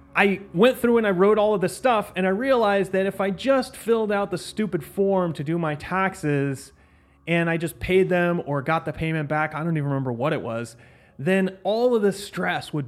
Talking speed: 230 wpm